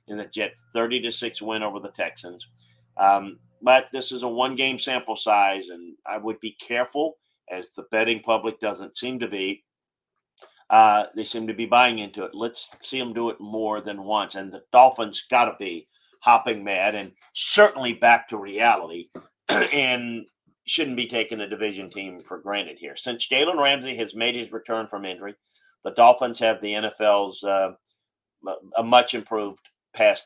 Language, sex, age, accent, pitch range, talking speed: English, male, 40-59, American, 105-130 Hz, 175 wpm